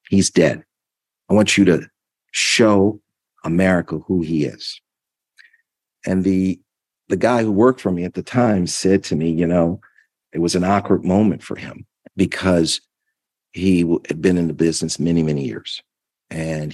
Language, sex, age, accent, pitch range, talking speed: English, male, 50-69, American, 75-95 Hz, 160 wpm